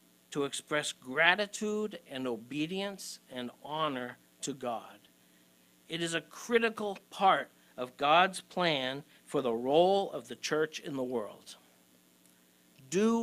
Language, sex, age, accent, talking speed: English, male, 60-79, American, 120 wpm